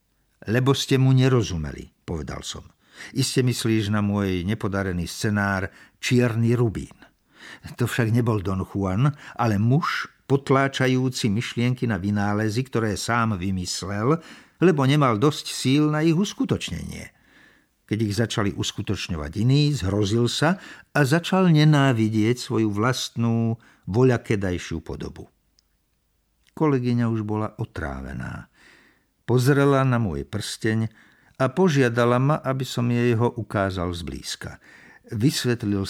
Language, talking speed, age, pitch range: Slovak, 110 wpm, 50-69, 95-130 Hz